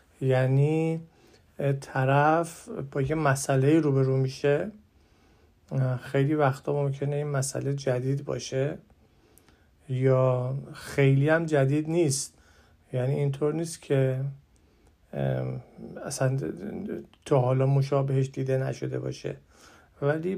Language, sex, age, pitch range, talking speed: Persian, male, 50-69, 130-150 Hz, 90 wpm